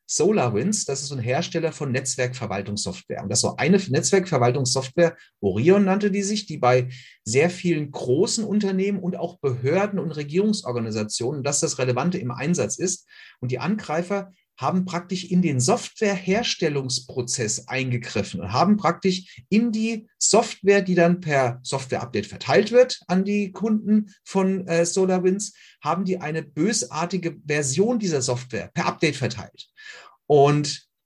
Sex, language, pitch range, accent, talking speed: male, German, 140-200 Hz, German, 135 wpm